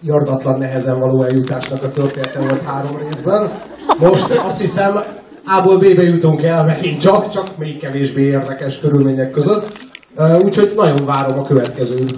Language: Hungarian